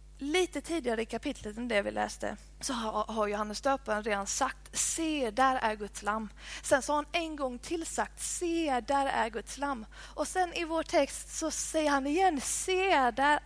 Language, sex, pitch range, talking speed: Swedish, female, 215-285 Hz, 185 wpm